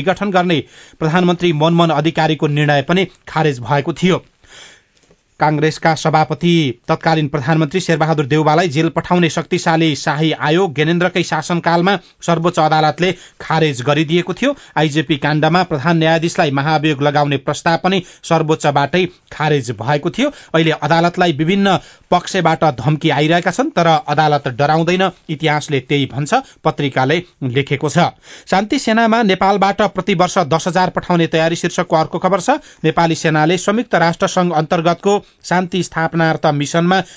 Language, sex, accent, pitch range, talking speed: English, male, Indian, 155-185 Hz, 105 wpm